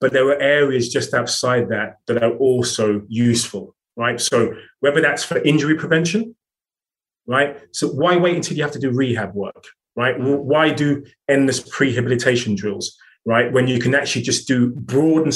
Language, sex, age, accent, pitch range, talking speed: English, male, 30-49, British, 115-160 Hz, 170 wpm